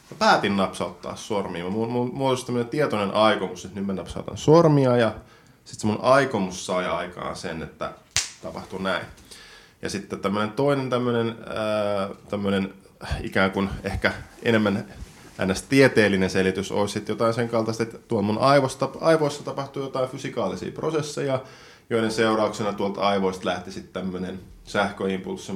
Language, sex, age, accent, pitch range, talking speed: Finnish, male, 20-39, native, 95-120 Hz, 145 wpm